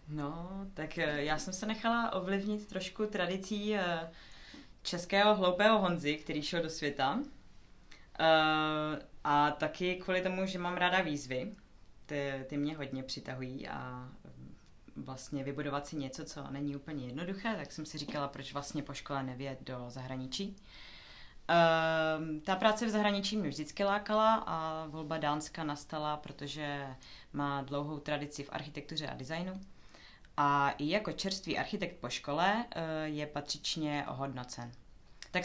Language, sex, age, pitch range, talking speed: Czech, female, 20-39, 140-180 Hz, 135 wpm